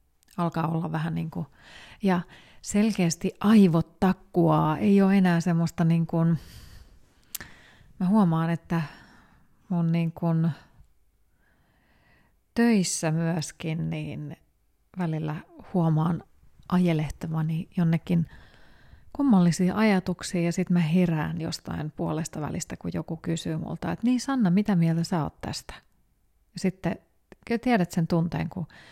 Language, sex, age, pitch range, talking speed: Finnish, female, 30-49, 160-185 Hz, 115 wpm